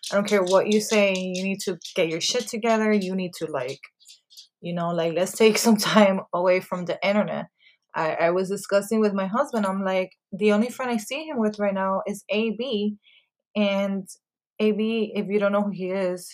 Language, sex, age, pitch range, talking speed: English, female, 20-39, 180-210 Hz, 210 wpm